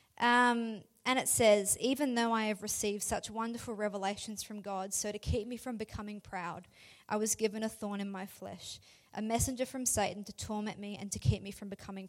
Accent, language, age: Australian, English, 20-39